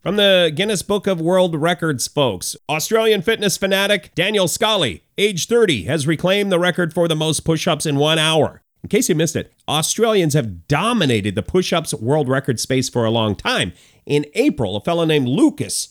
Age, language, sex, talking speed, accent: 40-59, English, male, 185 wpm, American